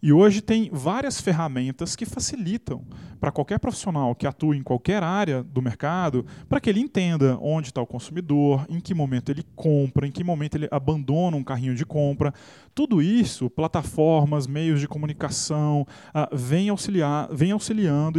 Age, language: 20-39, Portuguese